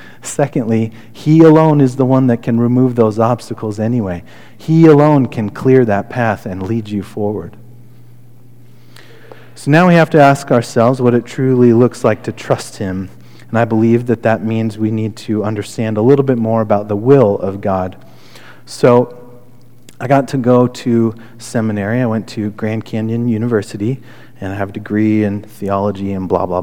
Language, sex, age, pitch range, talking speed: English, male, 30-49, 110-140 Hz, 180 wpm